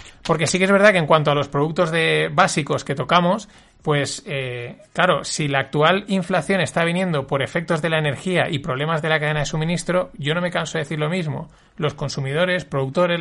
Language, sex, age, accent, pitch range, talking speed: Spanish, male, 30-49, Spanish, 145-185 Hz, 215 wpm